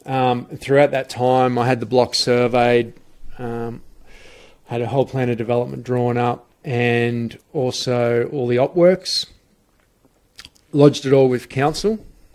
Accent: Australian